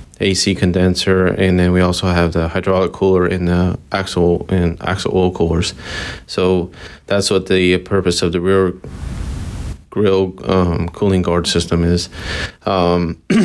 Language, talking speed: English, 145 wpm